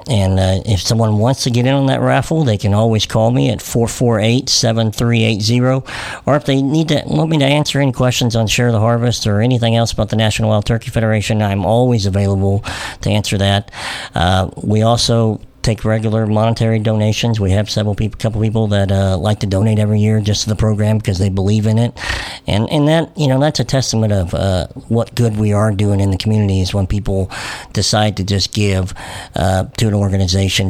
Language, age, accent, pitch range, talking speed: English, 50-69, American, 105-125 Hz, 210 wpm